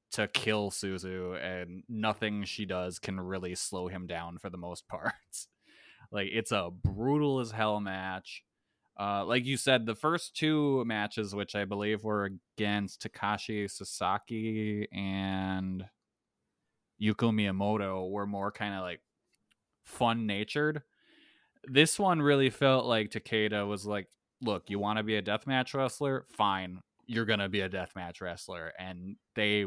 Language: English